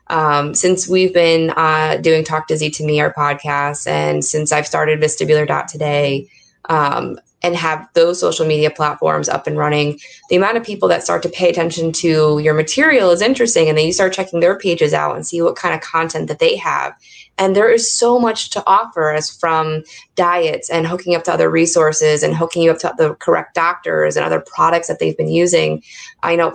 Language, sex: English, female